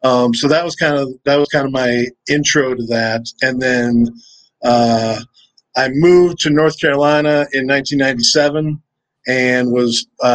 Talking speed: 145 wpm